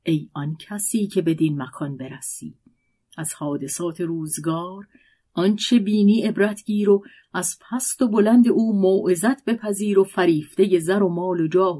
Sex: female